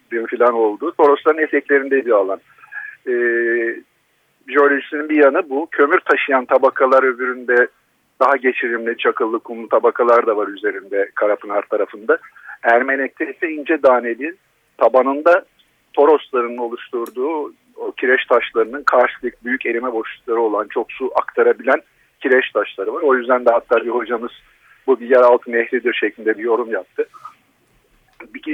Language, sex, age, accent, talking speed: Turkish, male, 50-69, native, 130 wpm